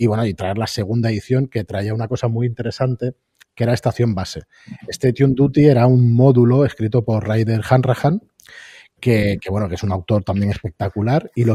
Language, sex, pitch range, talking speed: Spanish, male, 105-135 Hz, 195 wpm